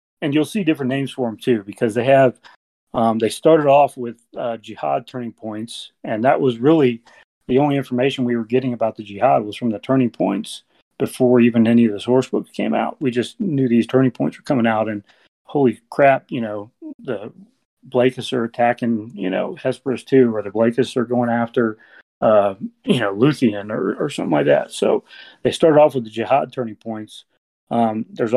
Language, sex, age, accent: English, male, 30-49, American